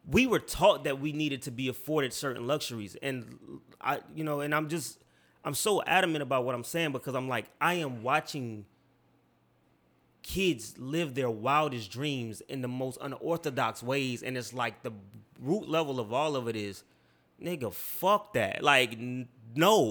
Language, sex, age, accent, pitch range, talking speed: English, male, 30-49, American, 125-165 Hz, 170 wpm